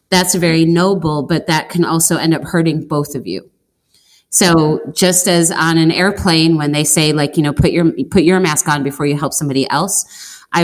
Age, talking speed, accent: 30-49, 210 wpm, American